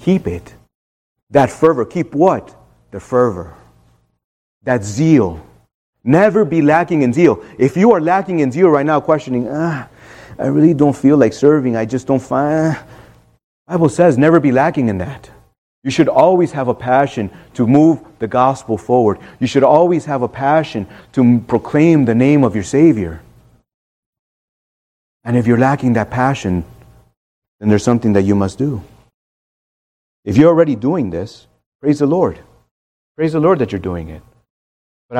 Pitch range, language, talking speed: 100-145 Hz, English, 165 wpm